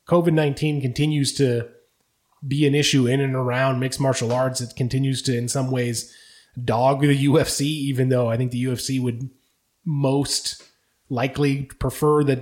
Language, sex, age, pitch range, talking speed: English, male, 20-39, 130-155 Hz, 155 wpm